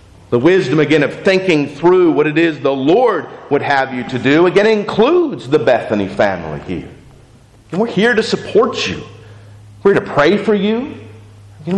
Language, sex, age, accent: English, male, 40-59, American